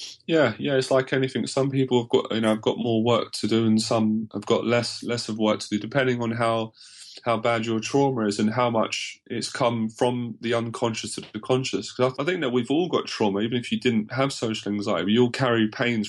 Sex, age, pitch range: male, 20-39, 110-125 Hz